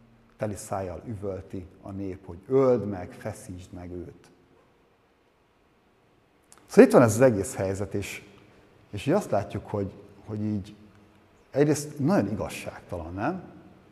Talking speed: 125 wpm